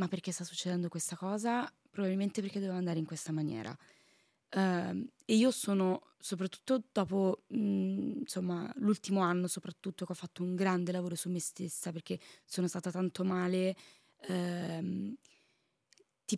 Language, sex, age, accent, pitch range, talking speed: Italian, female, 20-39, native, 180-220 Hz, 130 wpm